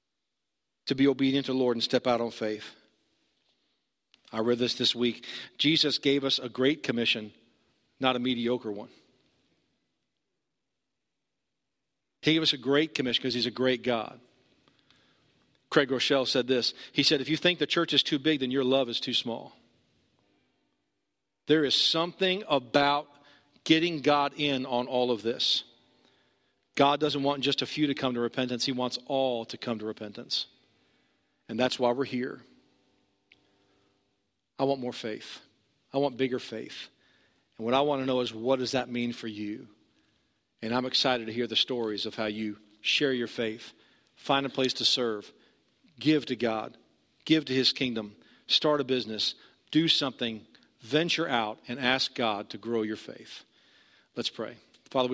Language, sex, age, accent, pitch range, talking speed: English, male, 50-69, American, 115-140 Hz, 165 wpm